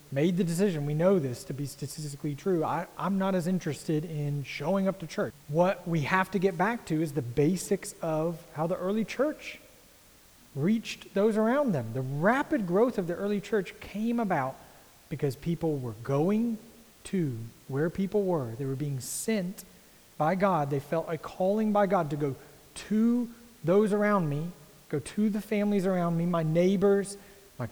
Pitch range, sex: 140-200 Hz, male